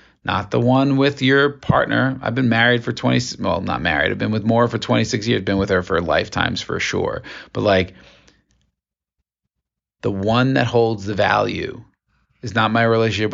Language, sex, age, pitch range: English, male, 40-59, 100-115 Hz